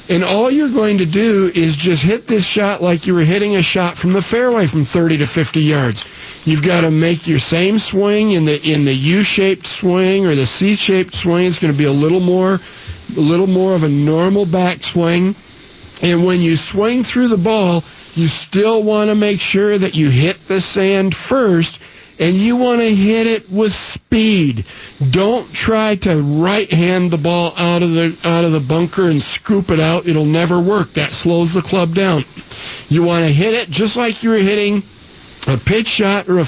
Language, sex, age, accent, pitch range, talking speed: English, male, 50-69, American, 155-200 Hz, 200 wpm